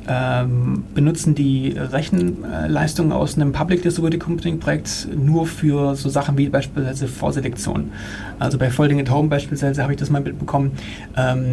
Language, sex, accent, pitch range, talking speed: German, male, German, 130-165 Hz, 150 wpm